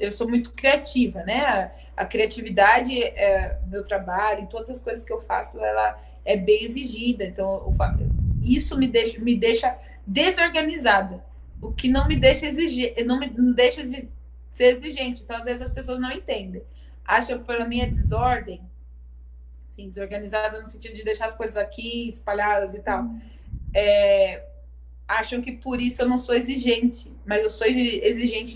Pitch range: 205-245 Hz